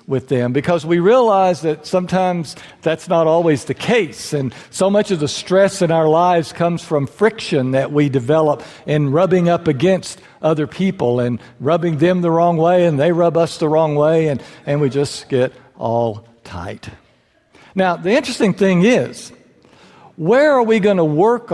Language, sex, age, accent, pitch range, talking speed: English, male, 60-79, American, 140-195 Hz, 175 wpm